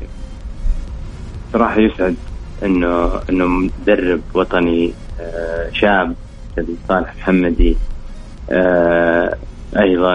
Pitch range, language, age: 85-100 Hz, Arabic, 30-49